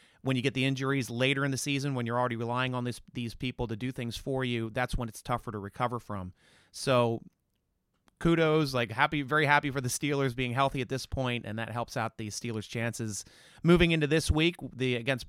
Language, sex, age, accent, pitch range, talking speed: English, male, 30-49, American, 120-155 Hz, 220 wpm